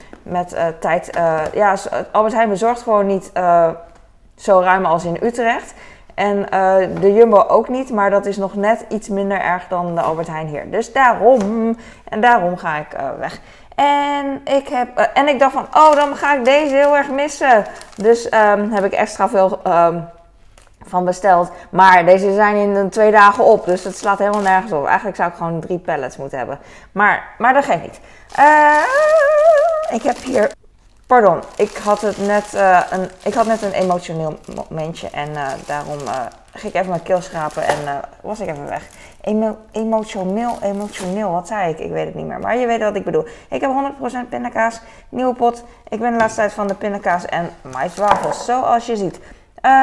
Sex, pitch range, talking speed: female, 180-245 Hz, 195 wpm